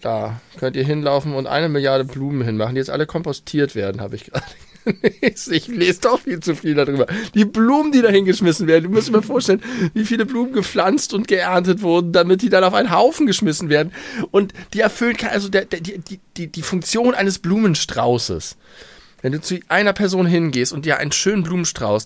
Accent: German